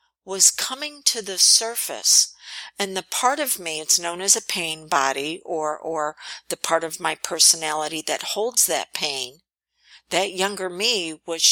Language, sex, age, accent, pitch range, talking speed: English, female, 50-69, American, 160-210 Hz, 160 wpm